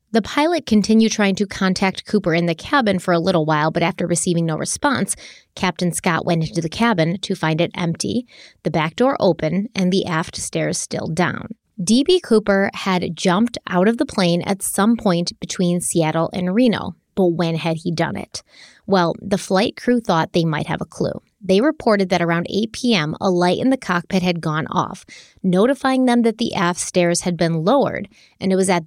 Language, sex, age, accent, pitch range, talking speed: English, female, 30-49, American, 170-210 Hz, 200 wpm